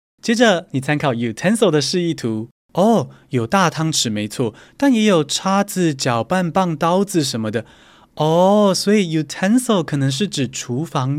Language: Chinese